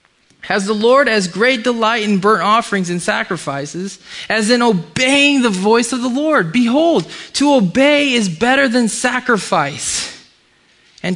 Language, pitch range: English, 150-200 Hz